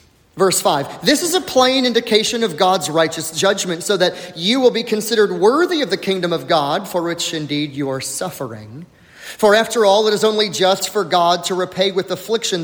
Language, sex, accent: English, male, American